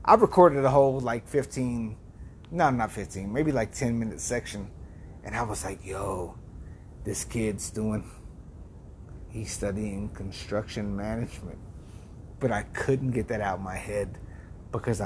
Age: 30-49